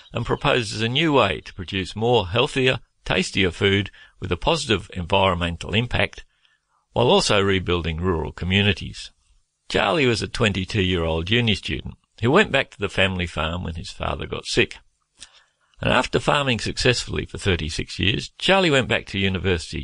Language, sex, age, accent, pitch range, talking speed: English, male, 50-69, Australian, 85-105 Hz, 155 wpm